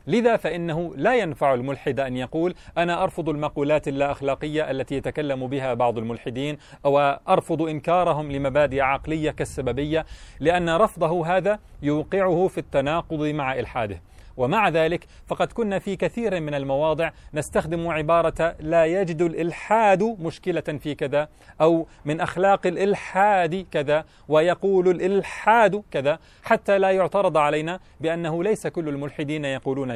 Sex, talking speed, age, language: male, 125 wpm, 30-49, English